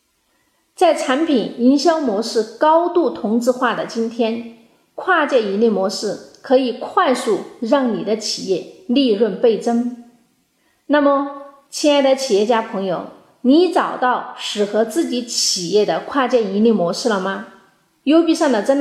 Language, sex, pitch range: Chinese, female, 210-290 Hz